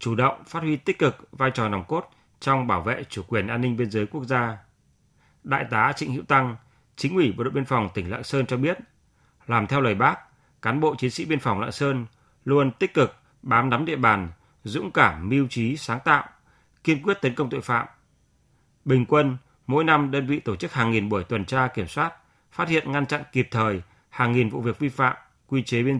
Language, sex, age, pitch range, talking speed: Vietnamese, male, 30-49, 115-145 Hz, 225 wpm